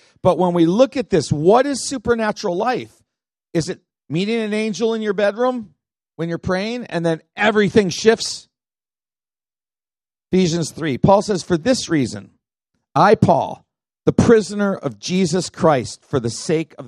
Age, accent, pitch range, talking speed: 50-69, American, 160-215 Hz, 155 wpm